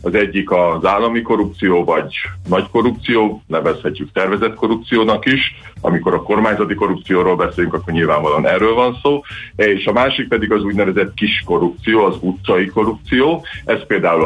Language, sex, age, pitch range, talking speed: Hungarian, male, 50-69, 90-105 Hz, 145 wpm